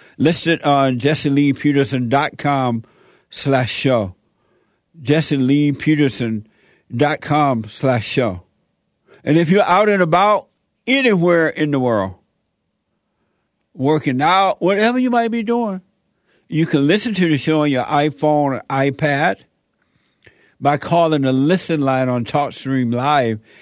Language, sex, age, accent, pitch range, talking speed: English, male, 60-79, American, 135-175 Hz, 110 wpm